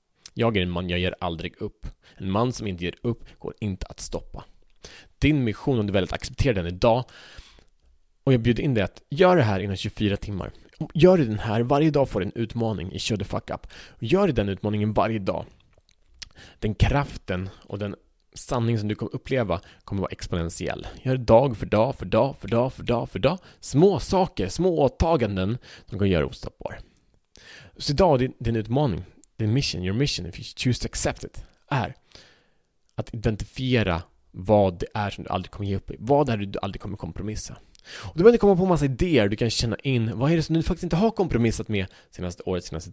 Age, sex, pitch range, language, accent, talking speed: 30-49, male, 95-130 Hz, Swedish, Norwegian, 210 wpm